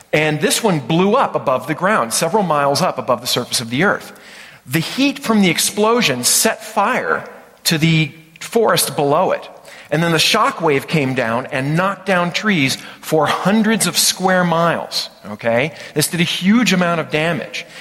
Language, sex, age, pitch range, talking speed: English, male, 40-59, 135-180 Hz, 180 wpm